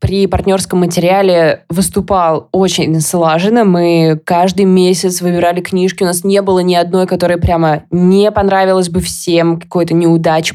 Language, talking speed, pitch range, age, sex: Russian, 140 wpm, 175-205 Hz, 20-39, female